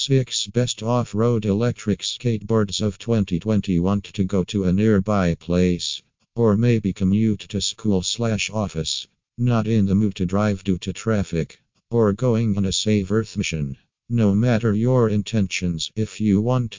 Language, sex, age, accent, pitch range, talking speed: English, male, 50-69, American, 95-110 Hz, 155 wpm